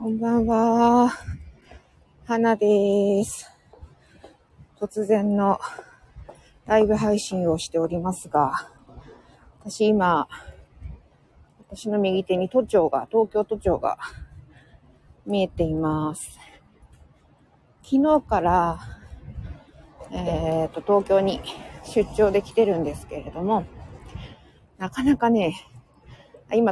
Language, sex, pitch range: Japanese, female, 160-220 Hz